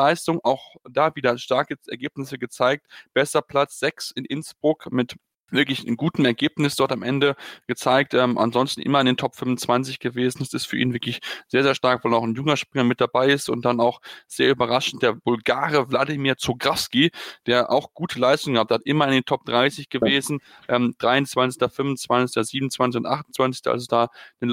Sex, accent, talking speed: male, German, 190 wpm